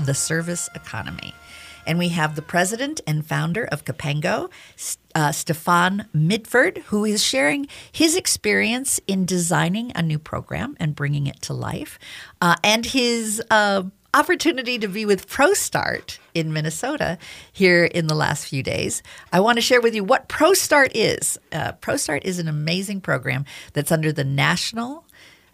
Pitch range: 155-215 Hz